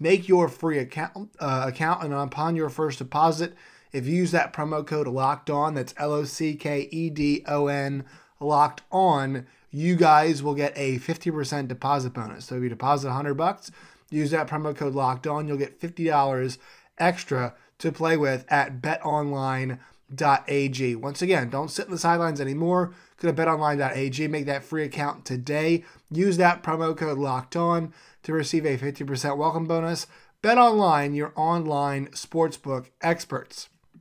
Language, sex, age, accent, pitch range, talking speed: English, male, 20-39, American, 140-165 Hz, 165 wpm